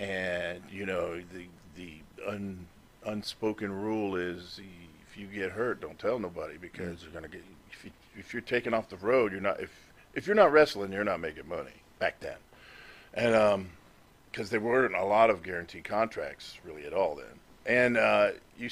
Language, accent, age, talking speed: English, American, 40-59, 185 wpm